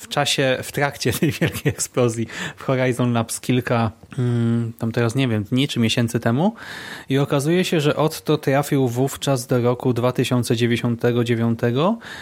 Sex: male